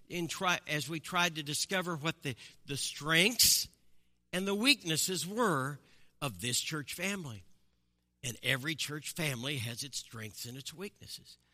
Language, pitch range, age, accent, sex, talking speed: English, 135-205 Hz, 60-79, American, male, 140 wpm